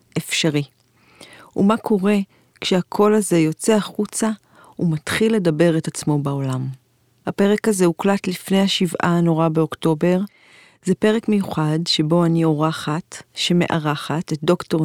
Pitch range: 160-200 Hz